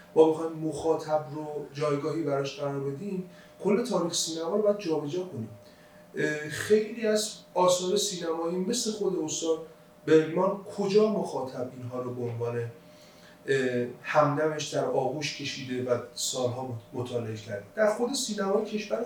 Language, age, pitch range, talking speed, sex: Persian, 30-49, 125-185 Hz, 125 wpm, male